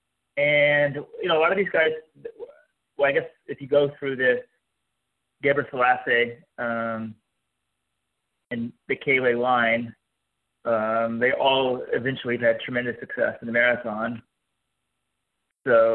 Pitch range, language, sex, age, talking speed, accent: 115-140 Hz, English, male, 30-49, 130 wpm, American